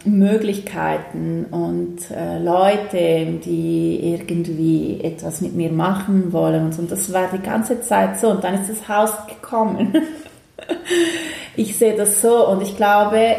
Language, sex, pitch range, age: German, female, 160-195 Hz, 30-49